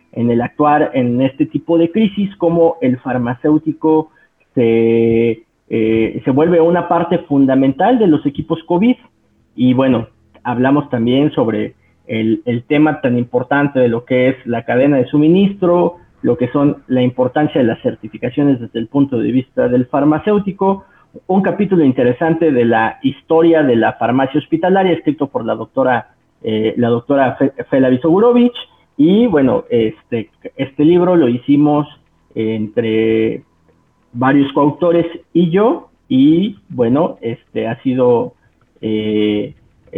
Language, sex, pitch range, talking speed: Spanish, male, 120-170 Hz, 140 wpm